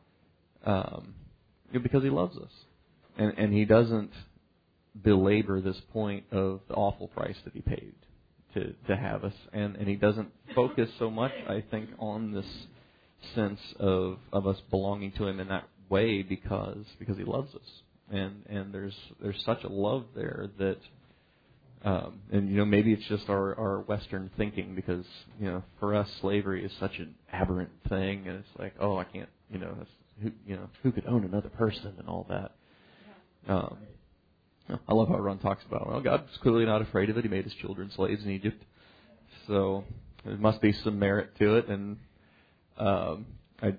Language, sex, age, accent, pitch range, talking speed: English, male, 30-49, American, 95-105 Hz, 180 wpm